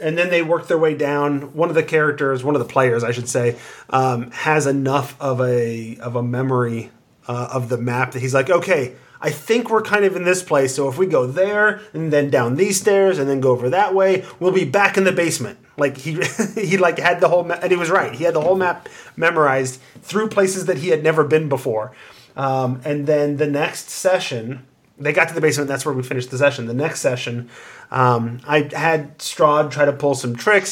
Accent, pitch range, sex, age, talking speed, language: American, 130-165 Hz, male, 30-49, 235 wpm, English